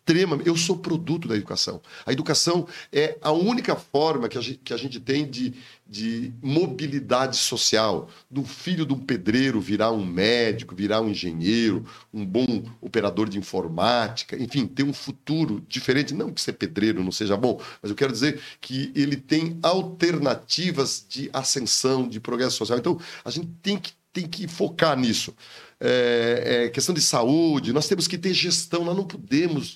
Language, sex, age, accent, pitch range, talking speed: Portuguese, male, 40-59, Brazilian, 125-160 Hz, 165 wpm